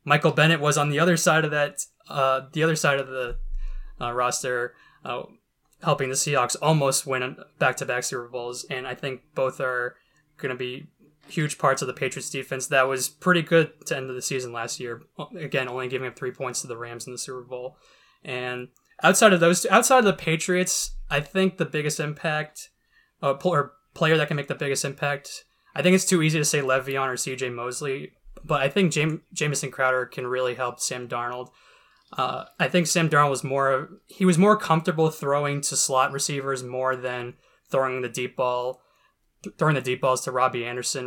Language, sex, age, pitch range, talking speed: English, male, 20-39, 125-155 Hz, 200 wpm